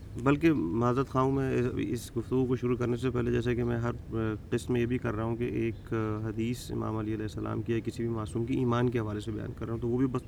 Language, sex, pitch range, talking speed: Urdu, male, 110-130 Hz, 275 wpm